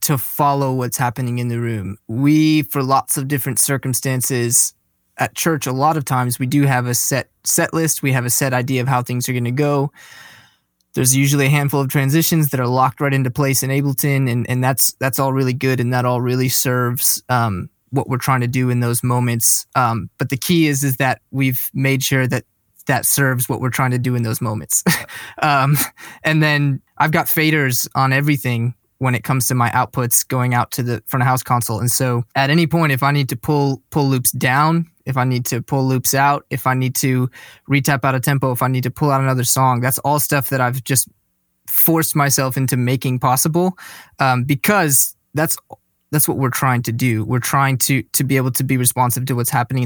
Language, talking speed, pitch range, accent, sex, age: English, 220 wpm, 125-140 Hz, American, male, 20-39